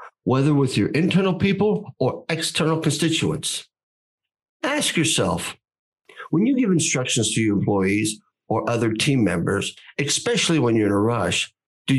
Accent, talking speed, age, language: American, 140 wpm, 50-69, English